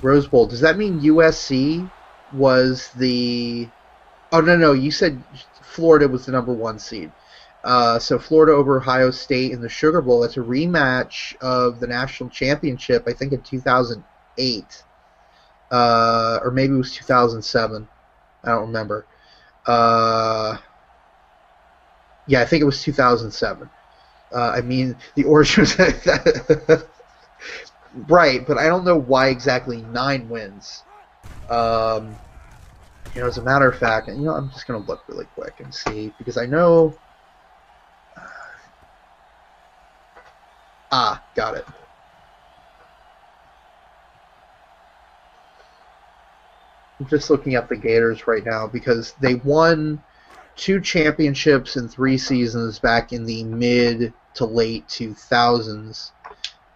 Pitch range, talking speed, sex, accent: 120-160 Hz, 125 wpm, male, American